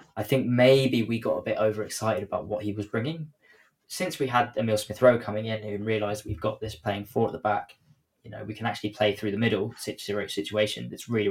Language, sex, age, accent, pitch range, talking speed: English, male, 10-29, British, 105-125 Hz, 225 wpm